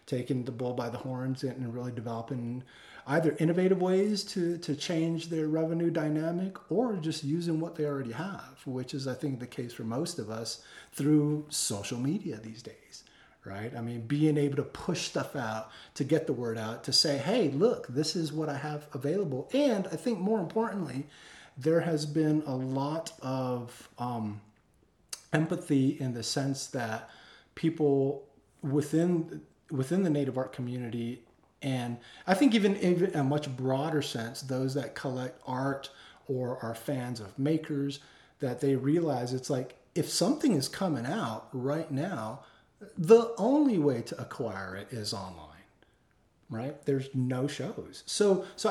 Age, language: 30-49, English